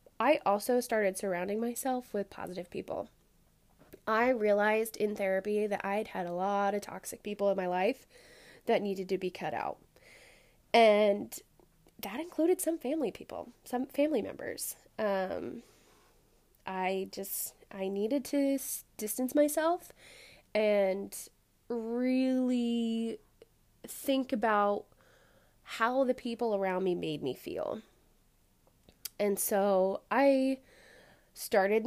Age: 20-39